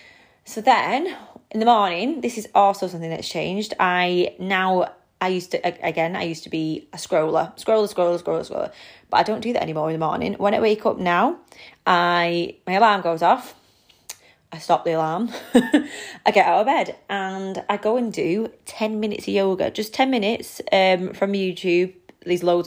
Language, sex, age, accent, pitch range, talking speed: English, female, 20-39, British, 175-210 Hz, 190 wpm